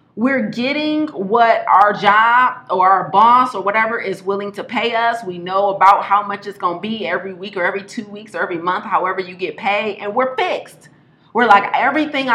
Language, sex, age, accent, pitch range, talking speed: English, female, 30-49, American, 180-235 Hz, 210 wpm